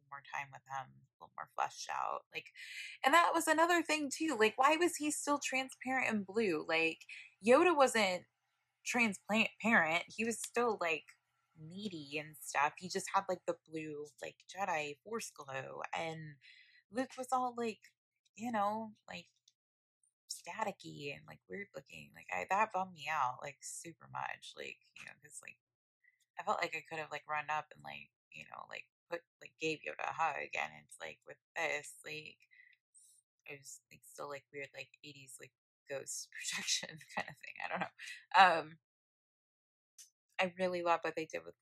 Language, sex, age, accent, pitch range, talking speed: English, female, 20-39, American, 150-225 Hz, 180 wpm